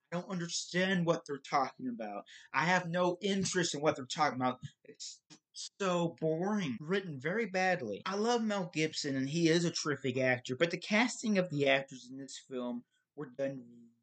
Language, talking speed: English, 185 wpm